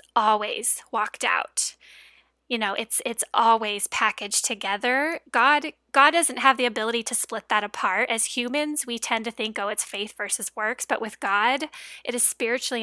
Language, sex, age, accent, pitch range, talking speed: English, female, 20-39, American, 215-255 Hz, 175 wpm